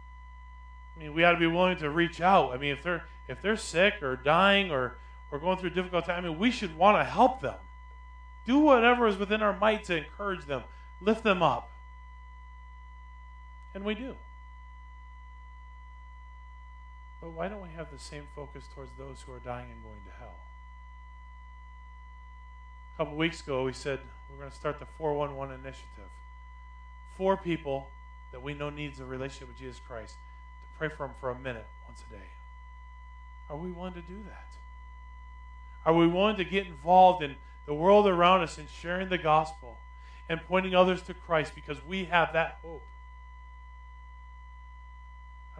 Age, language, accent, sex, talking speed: 40-59, English, American, male, 175 wpm